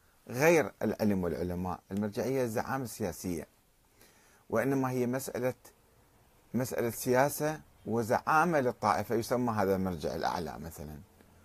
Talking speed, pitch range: 95 wpm, 100-130 Hz